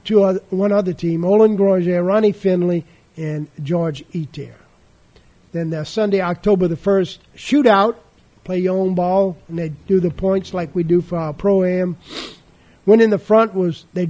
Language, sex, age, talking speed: English, male, 50-69, 170 wpm